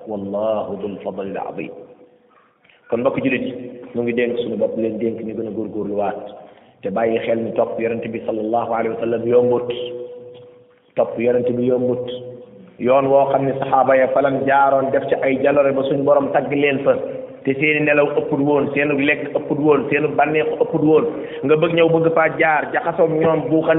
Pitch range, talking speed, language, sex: 125-210 Hz, 75 wpm, French, male